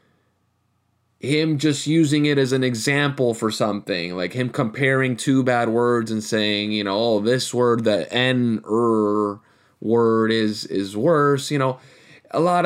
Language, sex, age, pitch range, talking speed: English, male, 20-39, 110-130 Hz, 155 wpm